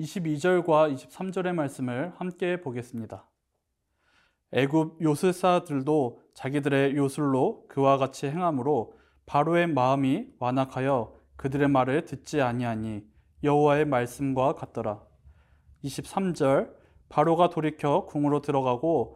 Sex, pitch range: male, 130-165 Hz